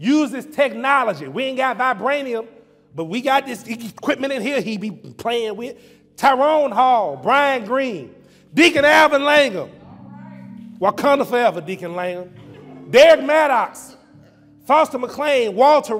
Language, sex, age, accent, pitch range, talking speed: English, male, 30-49, American, 185-275 Hz, 130 wpm